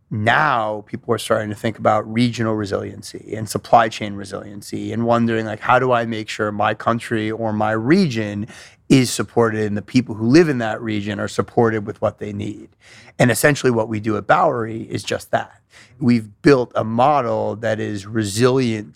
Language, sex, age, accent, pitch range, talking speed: English, male, 30-49, American, 105-120 Hz, 185 wpm